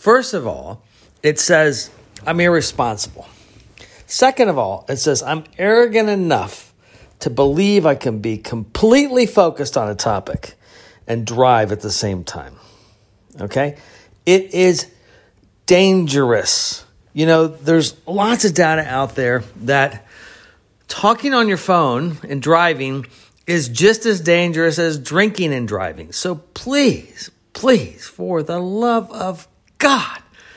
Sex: male